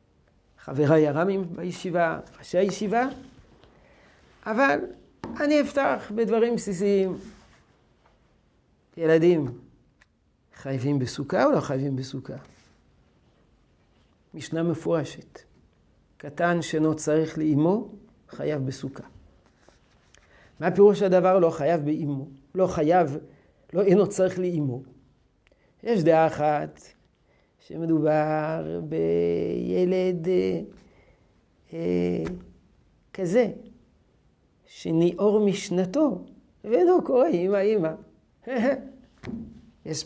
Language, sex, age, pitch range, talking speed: Hebrew, male, 50-69, 145-205 Hz, 80 wpm